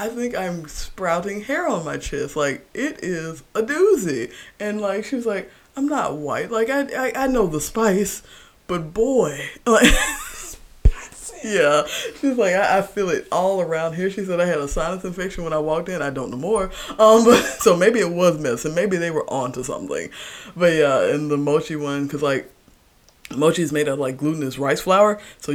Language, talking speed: English, 200 wpm